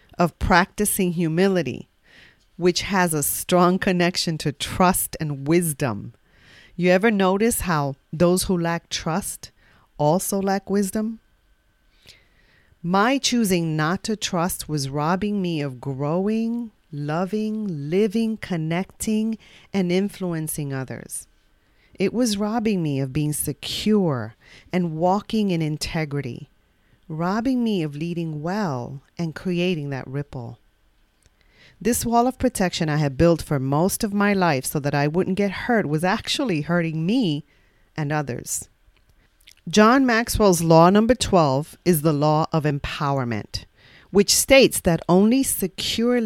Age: 40-59